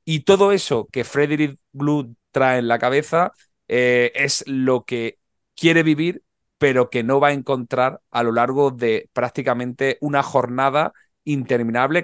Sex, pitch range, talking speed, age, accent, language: male, 120-145 Hz, 150 wpm, 30-49, Spanish, Spanish